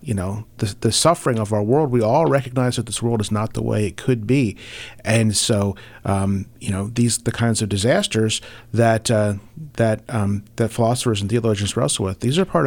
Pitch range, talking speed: 105-125 Hz, 210 wpm